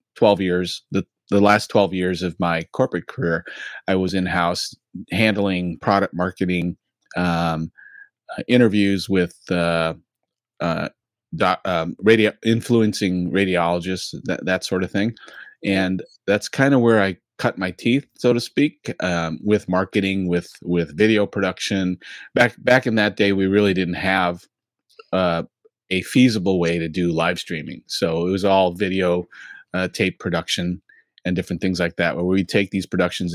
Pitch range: 90-100 Hz